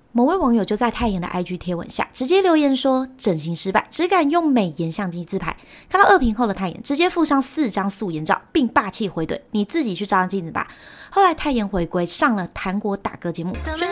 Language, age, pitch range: Chinese, 20-39, 180-275 Hz